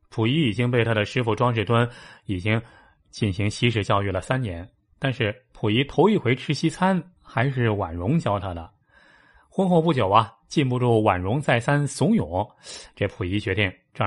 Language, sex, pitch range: Chinese, male, 105-150 Hz